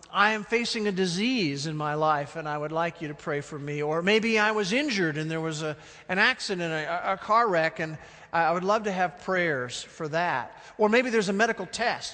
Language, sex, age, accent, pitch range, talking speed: English, male, 50-69, American, 150-200 Hz, 230 wpm